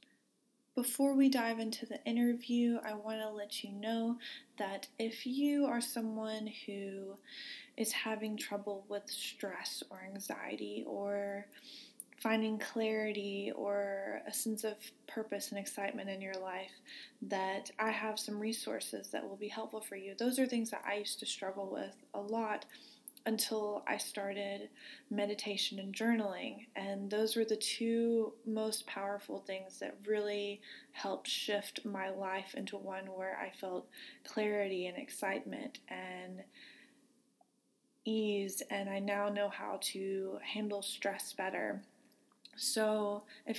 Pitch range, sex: 200-235 Hz, female